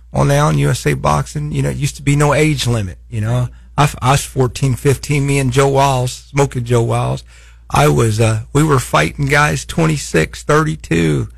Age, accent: 50-69, American